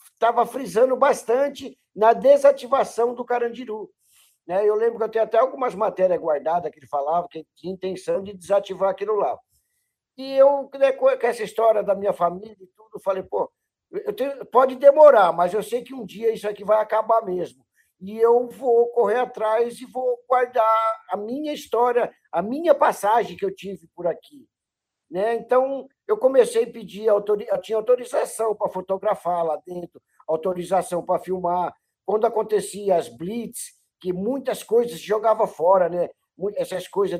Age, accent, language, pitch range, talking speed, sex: 50-69, Brazilian, Portuguese, 195-255 Hz, 165 wpm, male